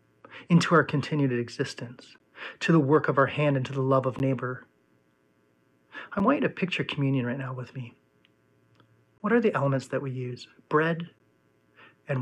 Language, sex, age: English, male, 40-59